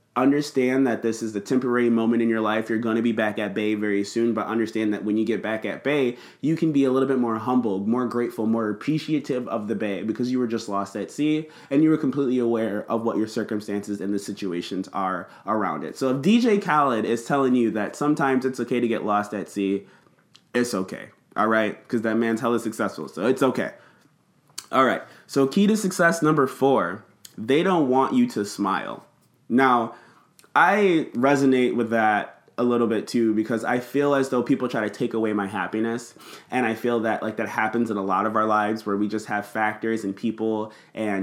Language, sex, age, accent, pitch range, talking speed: English, male, 20-39, American, 110-135 Hz, 215 wpm